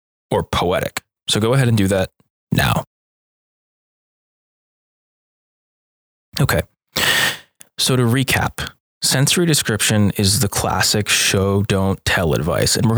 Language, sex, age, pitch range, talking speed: English, male, 20-39, 95-115 Hz, 110 wpm